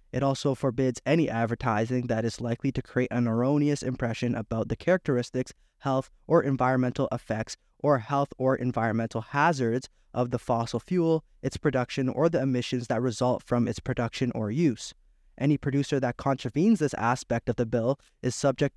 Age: 20-39